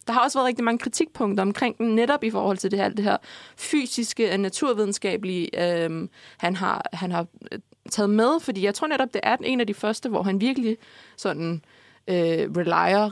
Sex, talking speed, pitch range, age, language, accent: female, 190 wpm, 185-225 Hz, 20-39, Danish, native